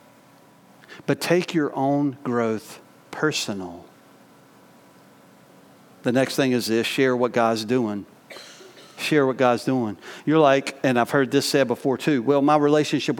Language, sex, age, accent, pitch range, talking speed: English, male, 50-69, American, 125-160 Hz, 140 wpm